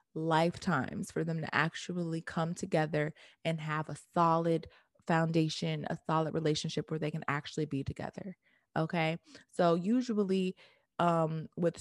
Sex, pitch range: female, 165-195 Hz